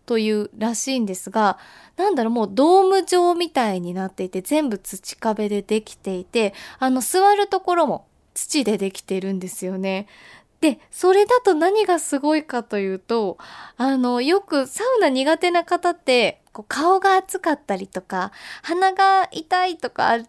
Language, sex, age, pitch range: Japanese, female, 20-39, 220-350 Hz